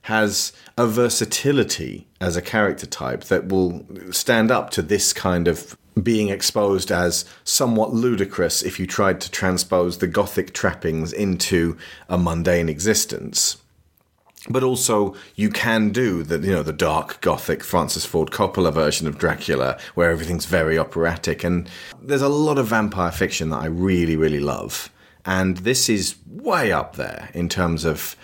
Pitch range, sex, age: 80-105 Hz, male, 30-49